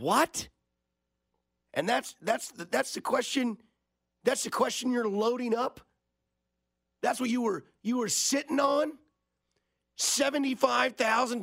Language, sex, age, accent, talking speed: English, male, 40-59, American, 115 wpm